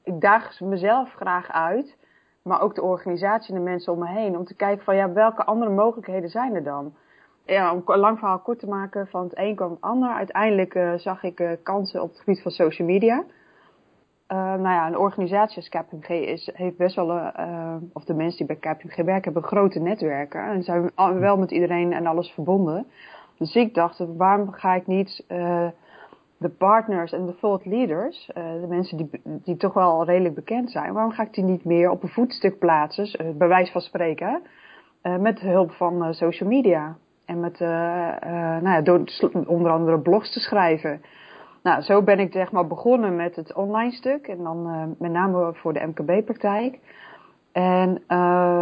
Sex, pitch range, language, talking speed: female, 170-200 Hz, Dutch, 190 wpm